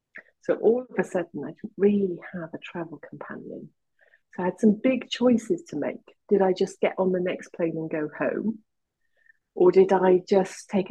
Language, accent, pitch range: English, British, 170-210 Hz